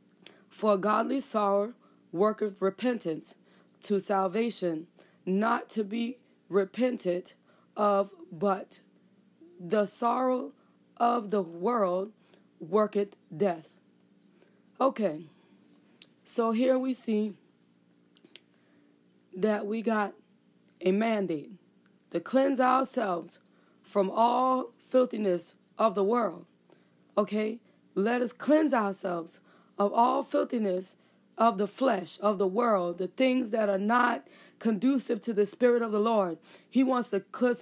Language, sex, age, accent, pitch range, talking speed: English, female, 20-39, American, 195-245 Hz, 105 wpm